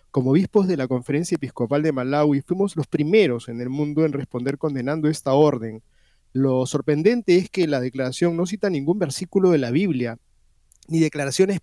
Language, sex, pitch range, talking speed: Spanish, male, 135-180 Hz, 175 wpm